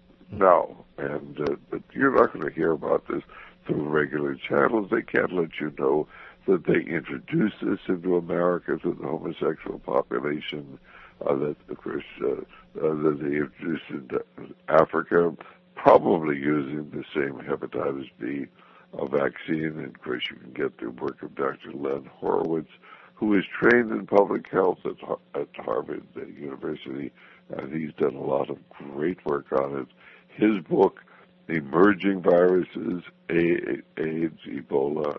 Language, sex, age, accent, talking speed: English, male, 60-79, American, 145 wpm